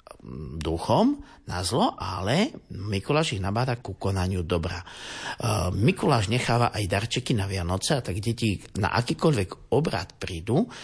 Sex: male